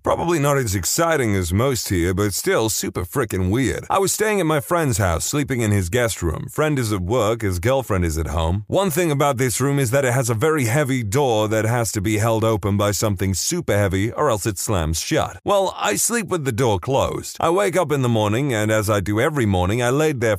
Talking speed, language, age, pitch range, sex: 245 wpm, English, 30-49, 100-145 Hz, male